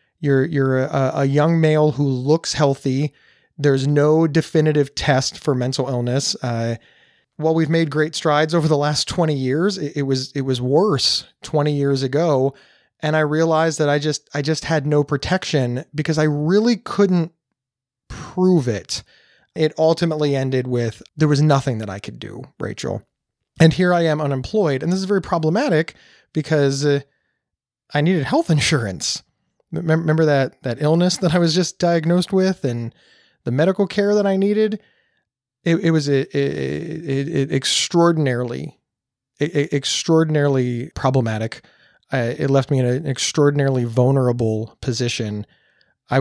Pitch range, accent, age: 125-160 Hz, American, 30-49